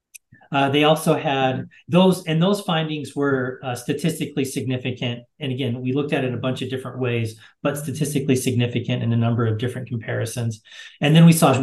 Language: English